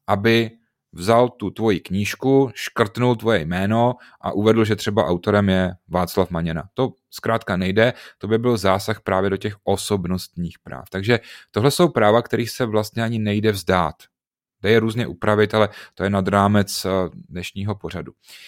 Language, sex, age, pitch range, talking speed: Czech, male, 30-49, 95-115 Hz, 160 wpm